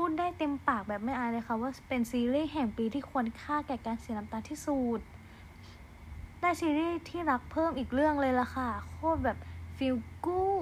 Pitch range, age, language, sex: 220-275 Hz, 20-39, Thai, female